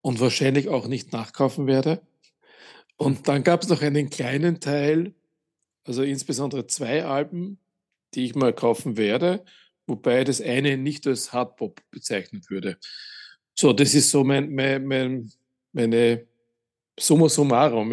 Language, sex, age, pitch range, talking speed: German, male, 50-69, 120-150 Hz, 135 wpm